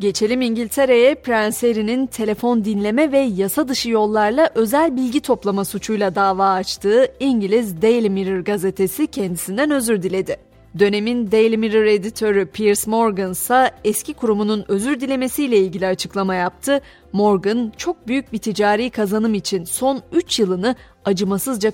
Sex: female